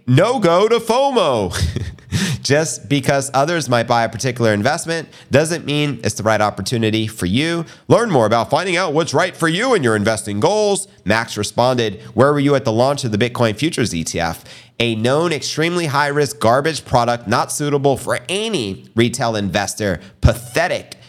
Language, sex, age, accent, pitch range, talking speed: English, male, 30-49, American, 105-150 Hz, 170 wpm